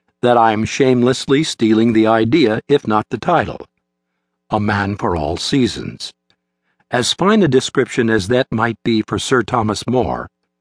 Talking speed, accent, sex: 160 wpm, American, male